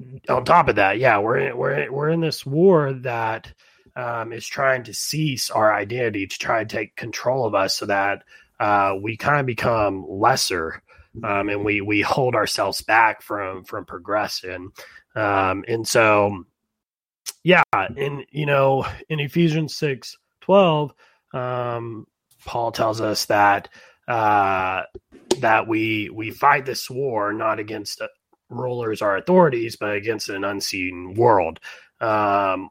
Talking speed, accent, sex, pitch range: 150 wpm, American, male, 105-150 Hz